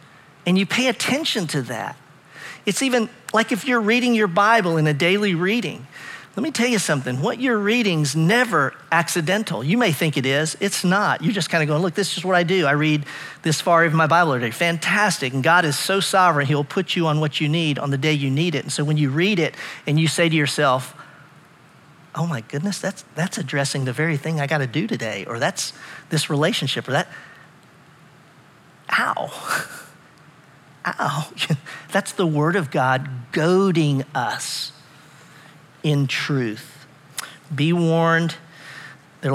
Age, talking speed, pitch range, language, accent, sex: 40-59, 180 wpm, 145-175 Hz, English, American, male